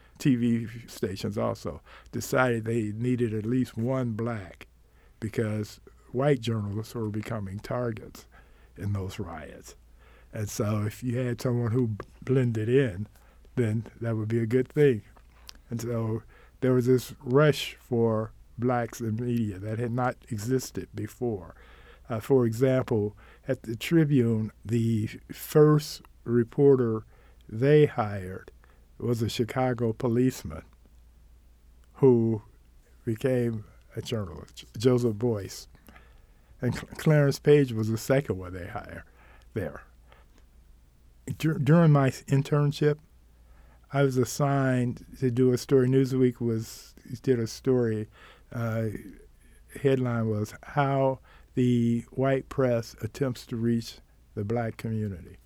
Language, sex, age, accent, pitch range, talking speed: English, male, 50-69, American, 105-130 Hz, 120 wpm